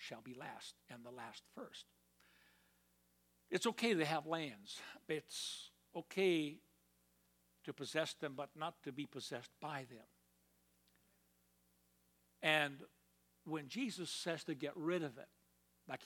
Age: 60-79